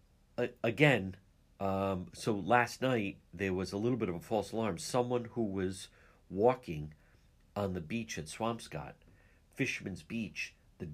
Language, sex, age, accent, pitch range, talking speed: English, male, 60-79, American, 85-120 Hz, 145 wpm